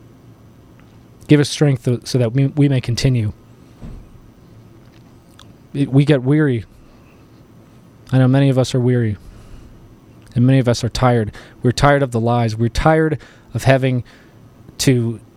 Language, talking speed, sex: English, 135 wpm, male